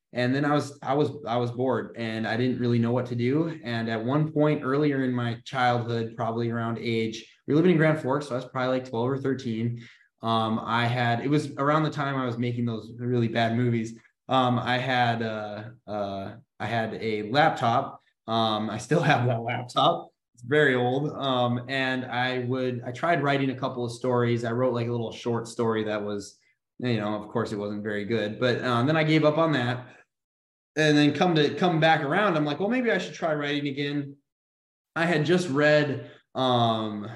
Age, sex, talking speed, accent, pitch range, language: 20-39, male, 215 wpm, American, 115-145 Hz, English